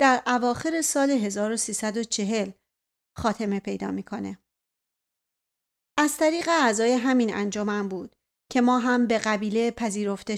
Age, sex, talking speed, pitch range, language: 40-59, female, 110 wpm, 220-255 Hz, Persian